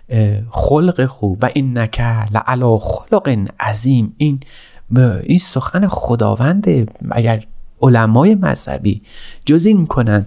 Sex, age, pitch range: male, 30-49, 105-140 Hz